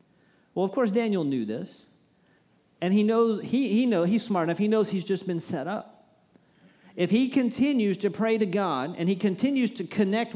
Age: 40-59